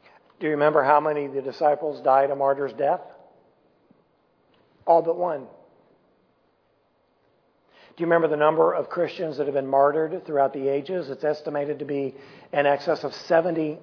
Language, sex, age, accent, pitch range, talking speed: English, male, 50-69, American, 145-220 Hz, 160 wpm